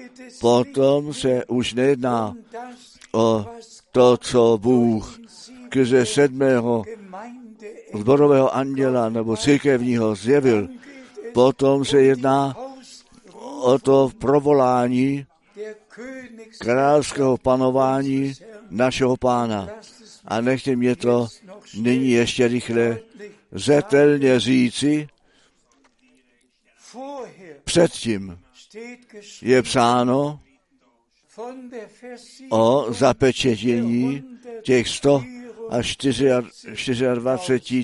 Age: 60-79